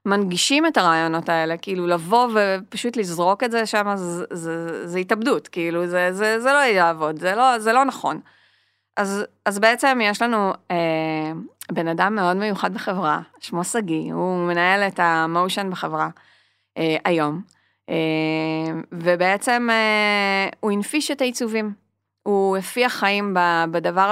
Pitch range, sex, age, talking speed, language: 175-215 Hz, female, 30-49, 145 wpm, Hebrew